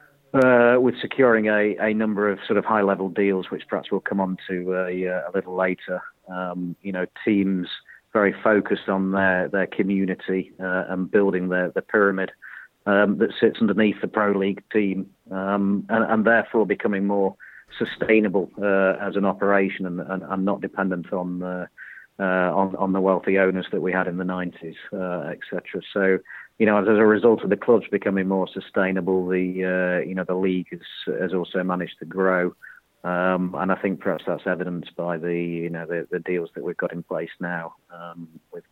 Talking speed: 190 wpm